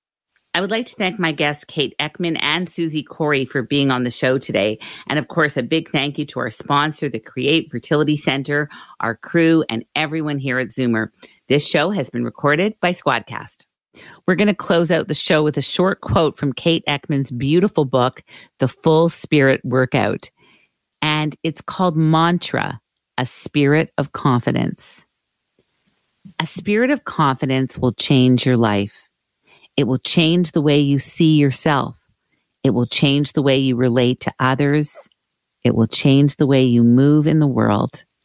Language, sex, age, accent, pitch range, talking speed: English, female, 50-69, American, 130-160 Hz, 170 wpm